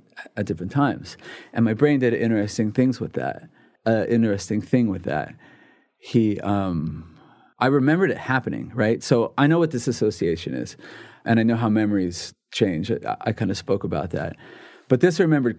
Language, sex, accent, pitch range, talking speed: English, male, American, 100-125 Hz, 180 wpm